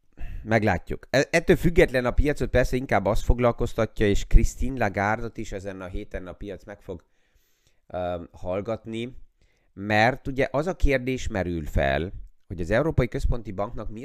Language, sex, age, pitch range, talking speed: Hungarian, male, 30-49, 95-115 Hz, 150 wpm